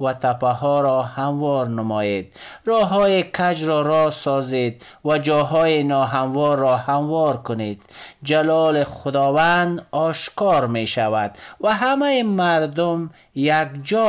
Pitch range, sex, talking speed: 120-170 Hz, male, 120 wpm